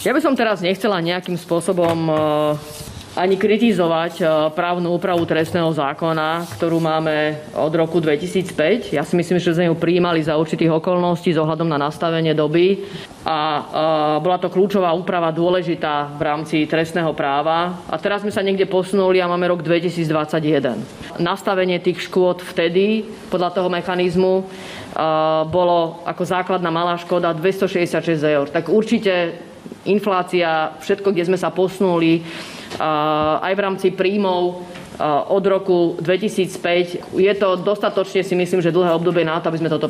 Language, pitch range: Slovak, 165-190 Hz